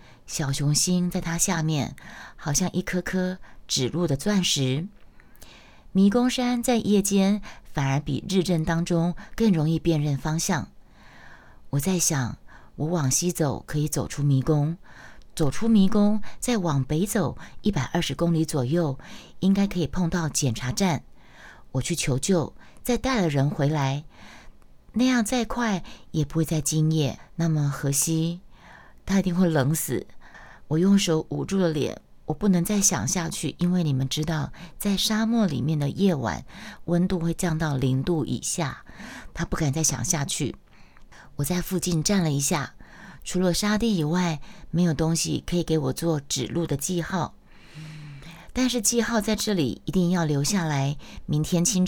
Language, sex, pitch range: Chinese, female, 150-190 Hz